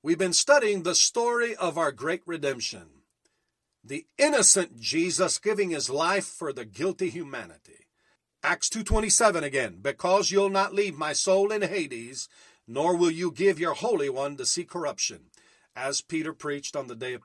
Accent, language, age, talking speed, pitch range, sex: American, English, 50-69, 165 wpm, 145-195 Hz, male